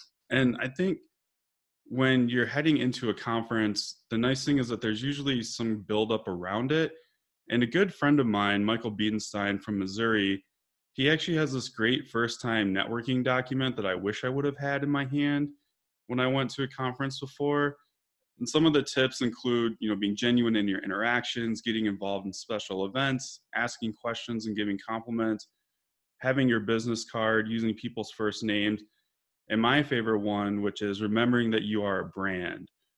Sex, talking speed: male, 180 wpm